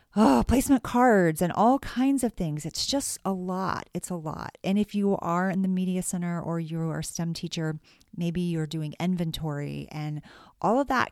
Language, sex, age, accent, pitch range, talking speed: English, female, 30-49, American, 160-200 Hz, 195 wpm